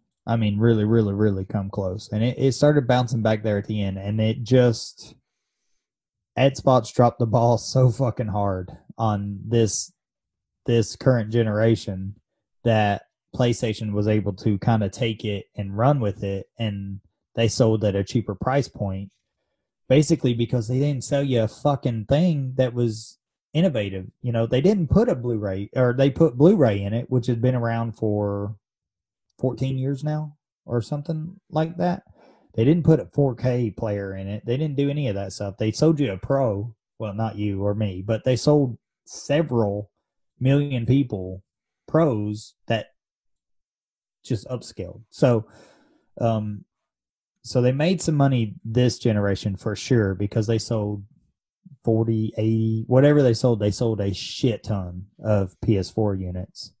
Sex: male